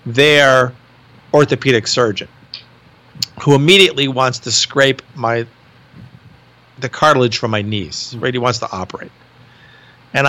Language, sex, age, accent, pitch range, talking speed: English, male, 50-69, American, 120-150 Hz, 115 wpm